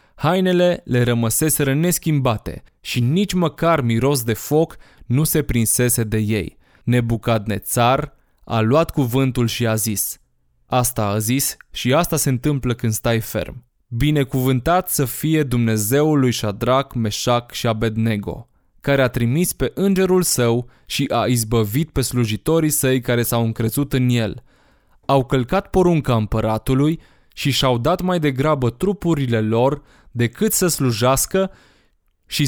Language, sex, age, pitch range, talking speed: Romanian, male, 20-39, 115-150 Hz, 135 wpm